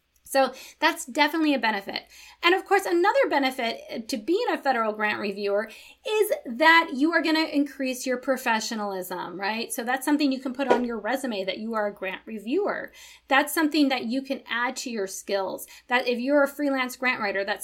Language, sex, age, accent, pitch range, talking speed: English, female, 20-39, American, 225-300 Hz, 195 wpm